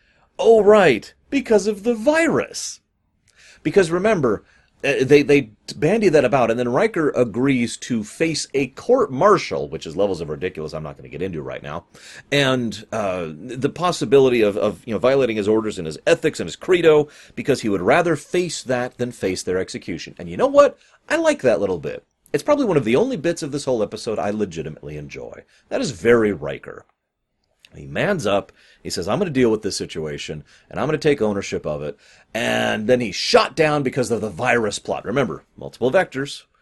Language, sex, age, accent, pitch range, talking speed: English, male, 30-49, American, 105-165 Hz, 200 wpm